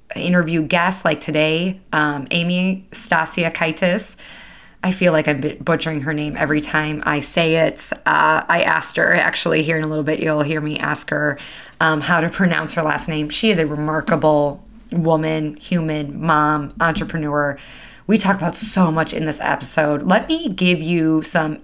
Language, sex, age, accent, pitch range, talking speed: English, female, 20-39, American, 155-190 Hz, 170 wpm